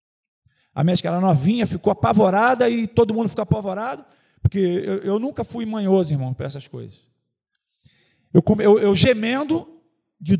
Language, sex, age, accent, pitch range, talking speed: Portuguese, male, 40-59, Brazilian, 165-255 Hz, 150 wpm